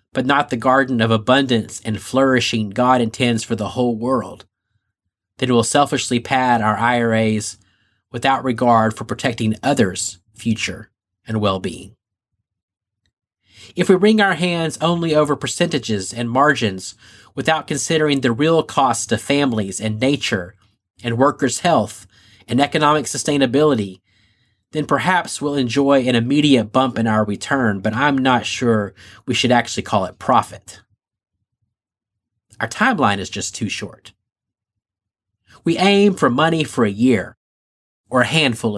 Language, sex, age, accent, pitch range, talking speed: English, male, 30-49, American, 105-135 Hz, 140 wpm